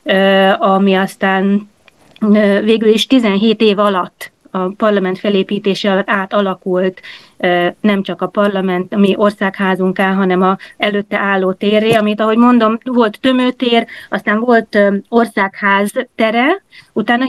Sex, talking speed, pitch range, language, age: female, 115 wpm, 195-220 Hz, Hungarian, 30-49